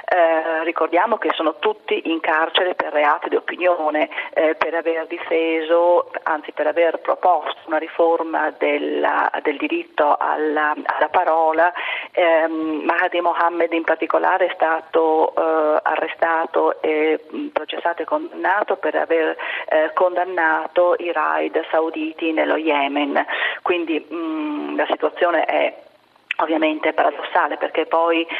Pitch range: 155-175 Hz